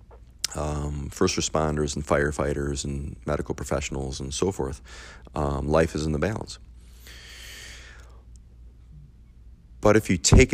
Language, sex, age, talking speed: English, male, 30-49, 120 wpm